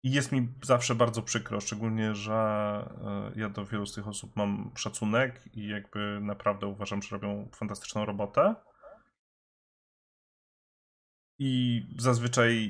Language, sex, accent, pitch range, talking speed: Polish, male, native, 100-120 Hz, 125 wpm